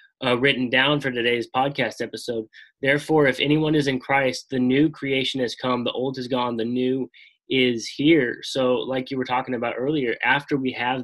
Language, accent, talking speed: English, American, 195 wpm